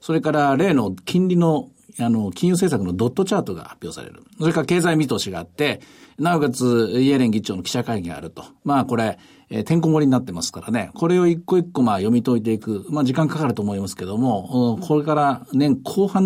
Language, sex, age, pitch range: Japanese, male, 50-69, 115-170 Hz